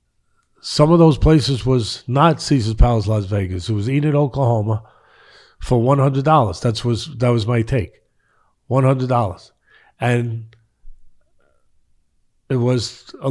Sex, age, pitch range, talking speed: male, 50-69, 115-135 Hz, 140 wpm